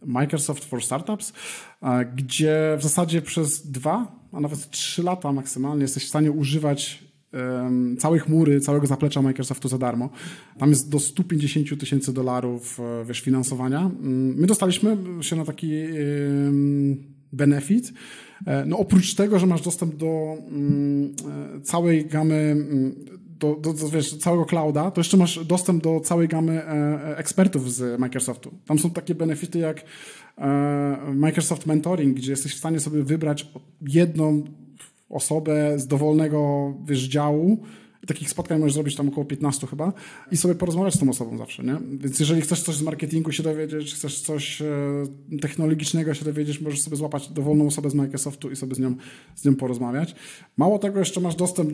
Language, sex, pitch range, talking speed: Polish, male, 140-160 Hz, 150 wpm